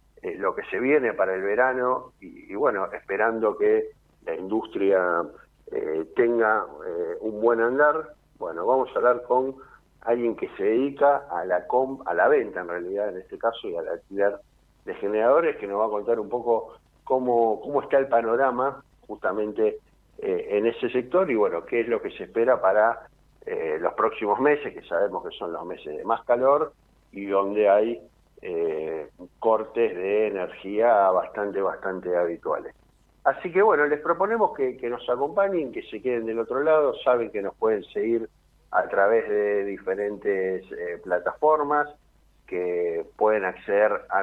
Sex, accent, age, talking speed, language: male, Argentinian, 50-69, 170 wpm, Spanish